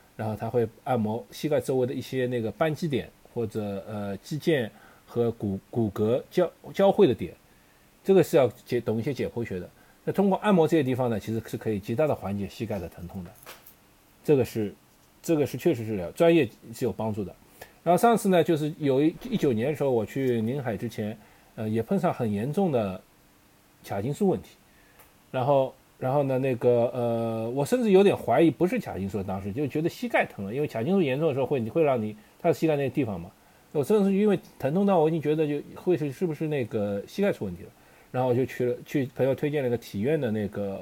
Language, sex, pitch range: Chinese, male, 110-155 Hz